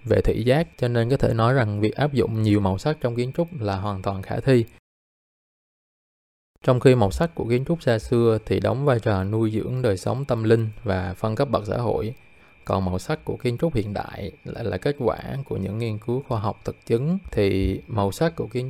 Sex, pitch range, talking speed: male, 105-130 Hz, 235 wpm